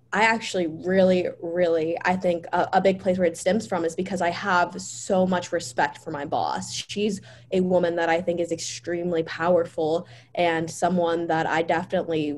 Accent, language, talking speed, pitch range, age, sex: American, English, 180 wpm, 165-185 Hz, 20-39, female